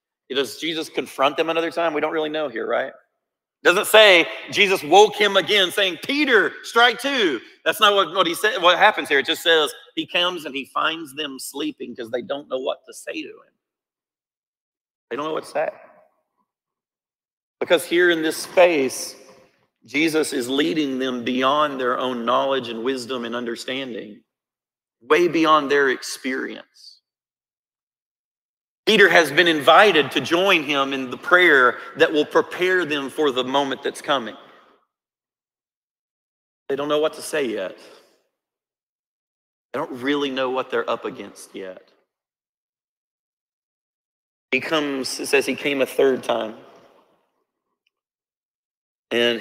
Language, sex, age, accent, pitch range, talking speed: English, male, 40-59, American, 130-180 Hz, 150 wpm